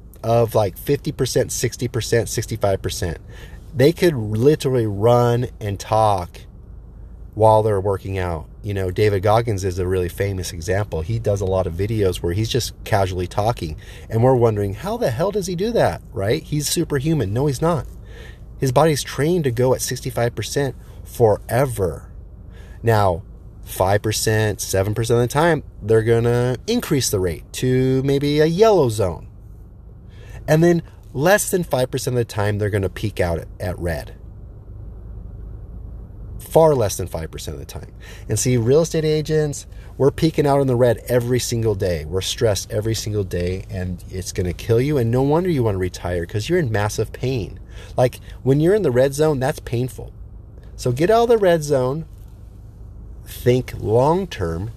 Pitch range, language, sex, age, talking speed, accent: 95-130 Hz, English, male, 30-49, 170 wpm, American